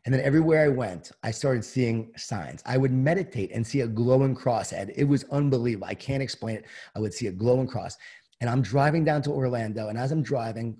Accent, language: American, English